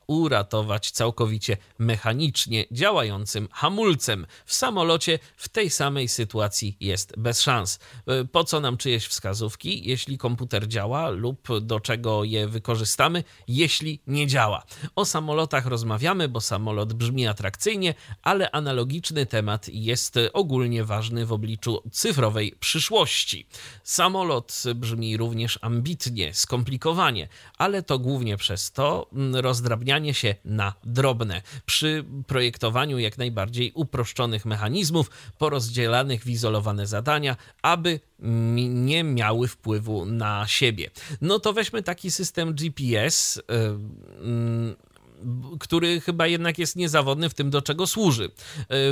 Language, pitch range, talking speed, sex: Polish, 110-150 Hz, 120 wpm, male